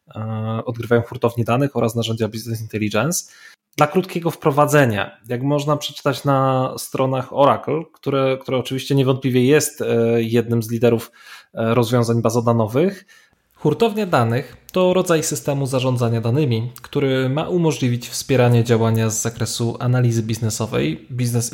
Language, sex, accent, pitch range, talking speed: Polish, male, native, 120-150 Hz, 120 wpm